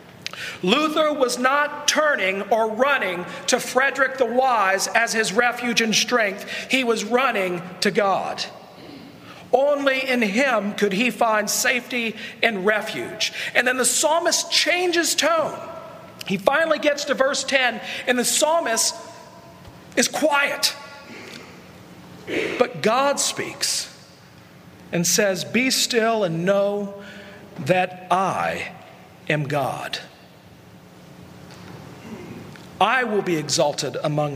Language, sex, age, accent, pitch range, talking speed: English, male, 50-69, American, 180-255 Hz, 110 wpm